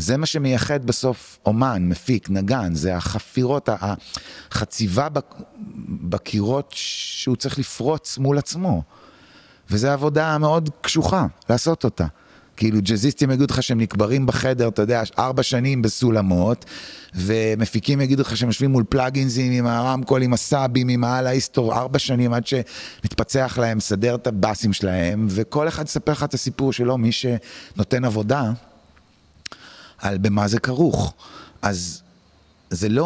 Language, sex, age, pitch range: Hebrew, male, 30-49, 95-130 Hz